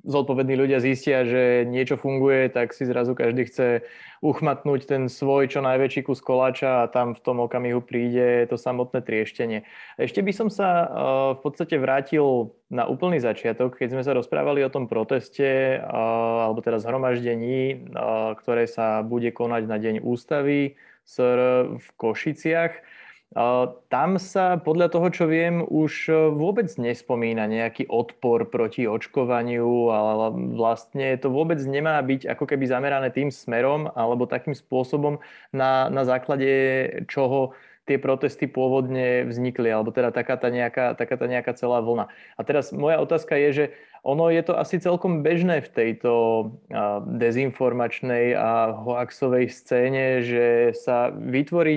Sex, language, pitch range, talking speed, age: male, Slovak, 120-155 Hz, 140 wpm, 20-39